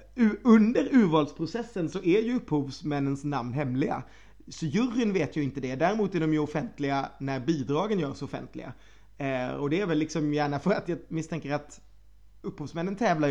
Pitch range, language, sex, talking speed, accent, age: 140-170 Hz, Swedish, male, 160 wpm, native, 30-49